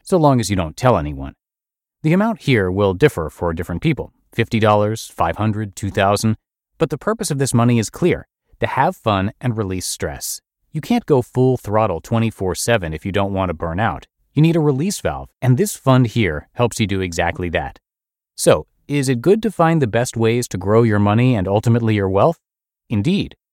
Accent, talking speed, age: American, 200 wpm, 30-49